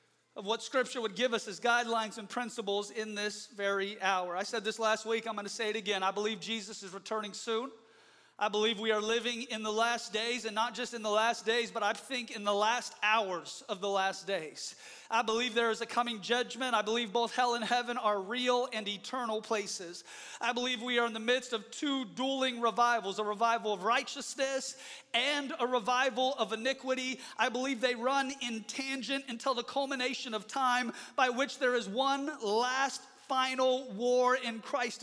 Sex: male